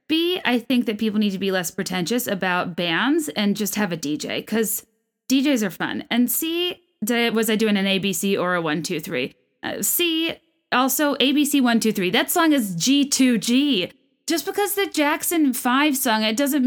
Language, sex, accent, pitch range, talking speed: English, female, American, 220-300 Hz, 180 wpm